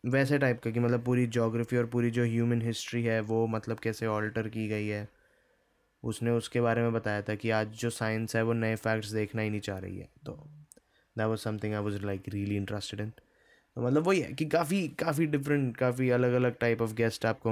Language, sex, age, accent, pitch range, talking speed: Hindi, male, 20-39, native, 100-120 Hz, 220 wpm